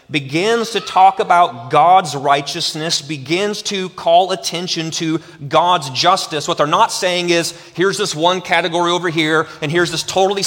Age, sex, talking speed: 30-49, male, 160 wpm